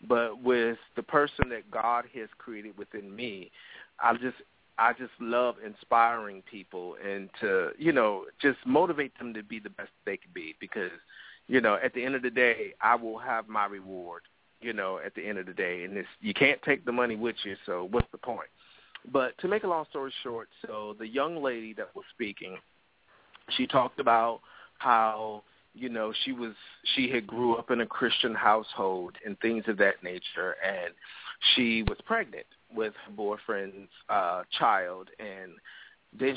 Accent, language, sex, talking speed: American, English, male, 185 wpm